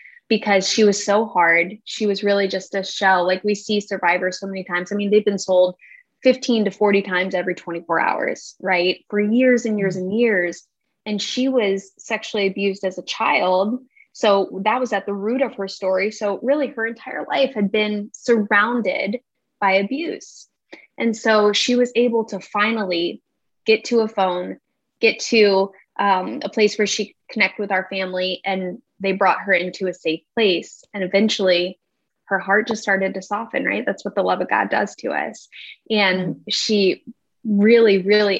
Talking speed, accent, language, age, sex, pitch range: 185 wpm, American, English, 10-29, female, 190-215 Hz